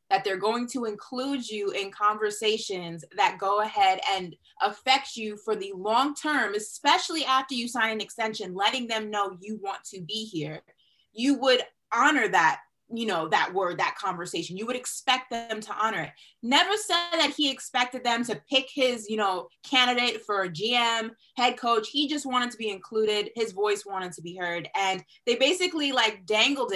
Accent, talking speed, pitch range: American, 185 wpm, 205-265 Hz